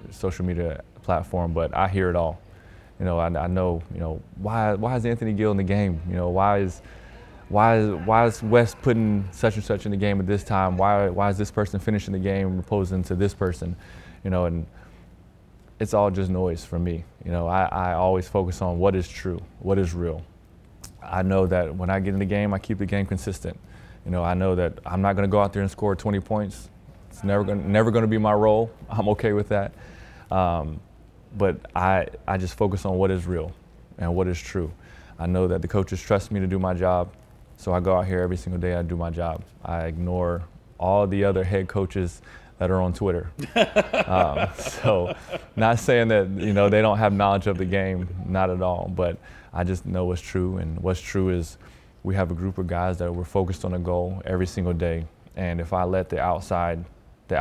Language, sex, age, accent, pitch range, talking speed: English, male, 20-39, American, 90-100 Hz, 225 wpm